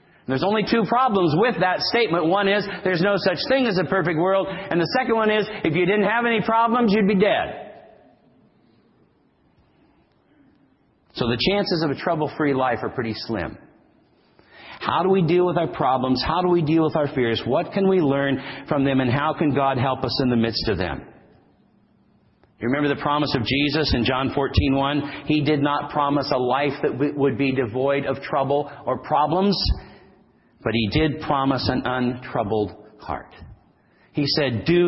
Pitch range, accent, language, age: 130-185 Hz, American, English, 40-59